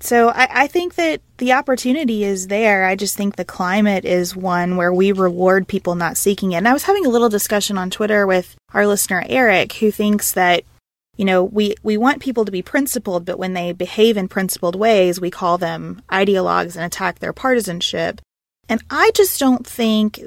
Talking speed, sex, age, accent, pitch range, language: 200 wpm, female, 20-39, American, 180-225 Hz, English